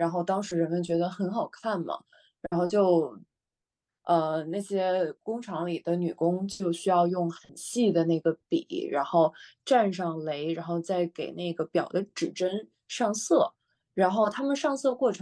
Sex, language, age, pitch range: female, English, 20-39, 170-210 Hz